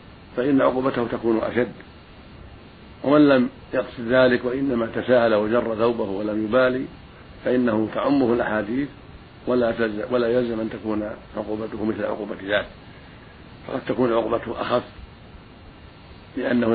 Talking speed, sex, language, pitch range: 110 wpm, male, Arabic, 105-125 Hz